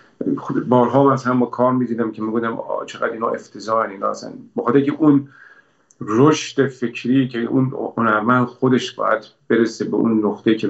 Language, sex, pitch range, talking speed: Persian, male, 105-125 Hz, 145 wpm